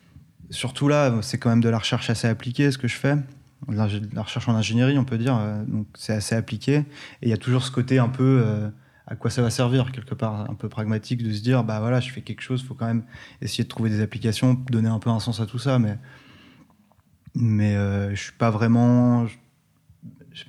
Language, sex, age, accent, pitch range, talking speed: French, male, 20-39, French, 110-130 Hz, 235 wpm